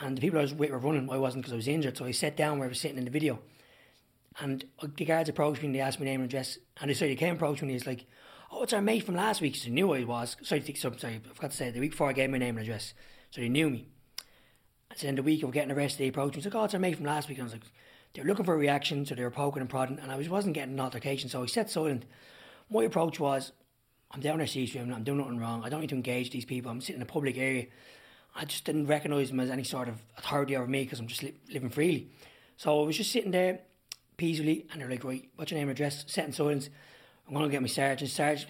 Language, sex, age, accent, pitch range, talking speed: English, male, 20-39, Irish, 130-150 Hz, 310 wpm